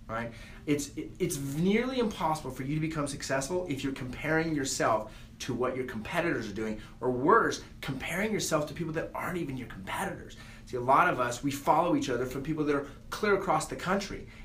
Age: 30-49